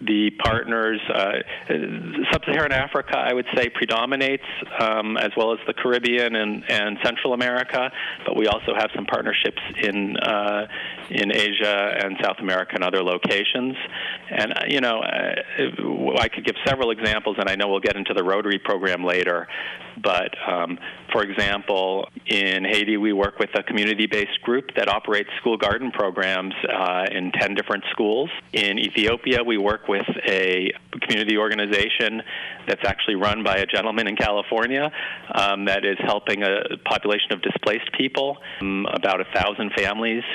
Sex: male